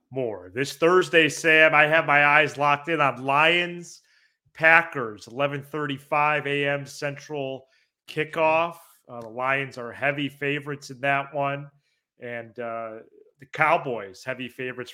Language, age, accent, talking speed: English, 30-49, American, 125 wpm